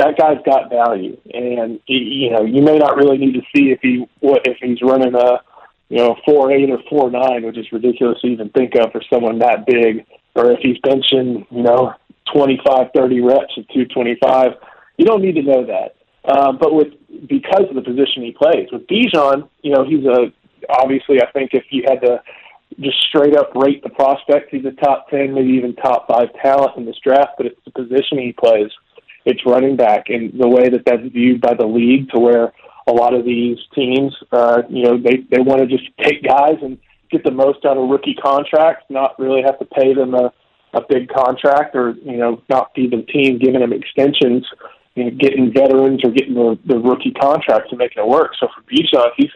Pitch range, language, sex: 120-140 Hz, English, male